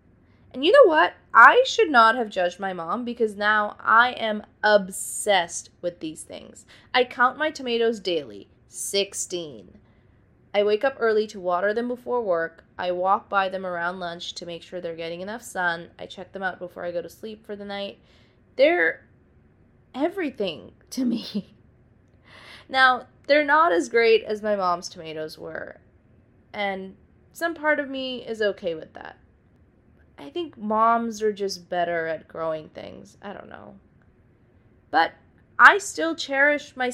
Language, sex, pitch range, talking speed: English, female, 170-235 Hz, 160 wpm